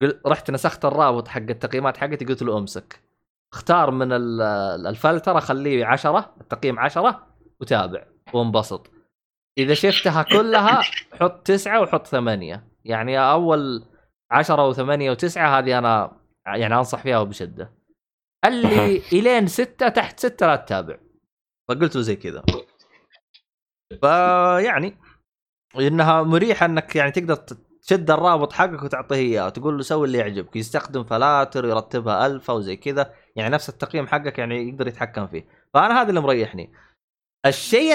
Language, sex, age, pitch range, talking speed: Arabic, male, 20-39, 125-180 Hz, 135 wpm